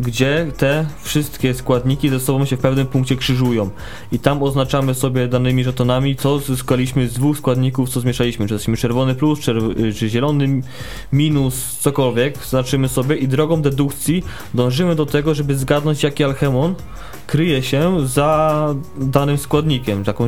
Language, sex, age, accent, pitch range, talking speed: Polish, male, 20-39, native, 125-150 Hz, 150 wpm